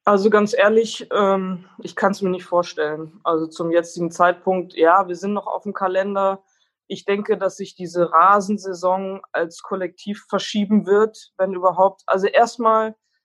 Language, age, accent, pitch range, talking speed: German, 20-39, German, 170-195 Hz, 155 wpm